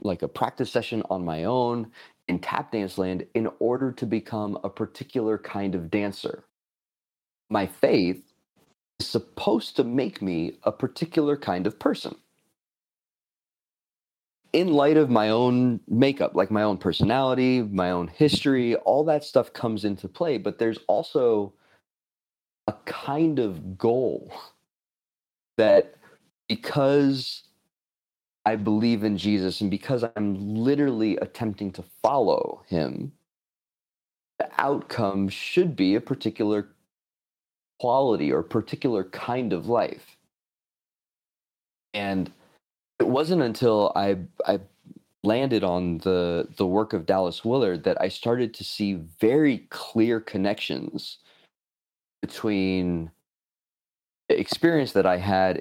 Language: English